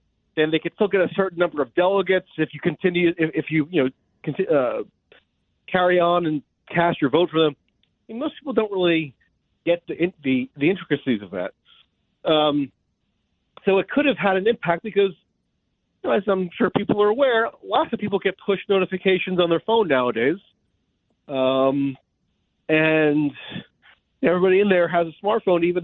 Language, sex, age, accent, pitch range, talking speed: English, male, 40-59, American, 140-190 Hz, 180 wpm